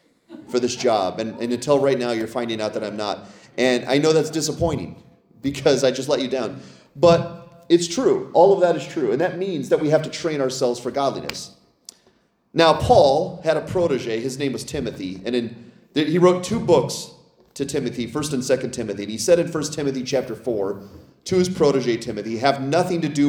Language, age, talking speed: English, 30-49, 210 wpm